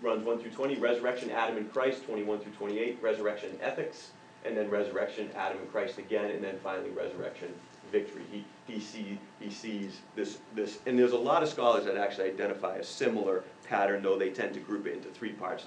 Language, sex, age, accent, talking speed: English, male, 30-49, American, 200 wpm